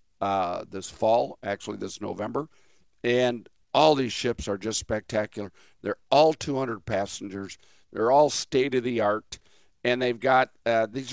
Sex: male